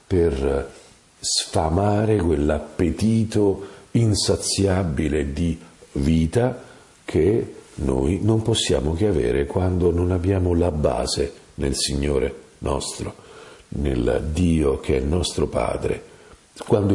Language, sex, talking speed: Italian, male, 100 wpm